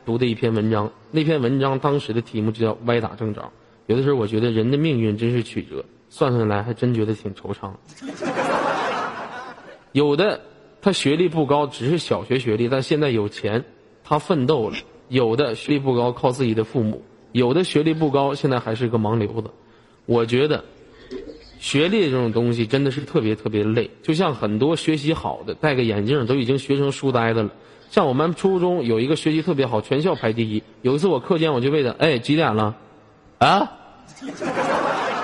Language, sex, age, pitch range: Chinese, male, 20-39, 115-155 Hz